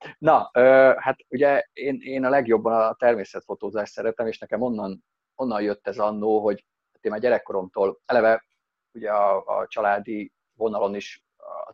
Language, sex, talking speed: Hungarian, male, 140 wpm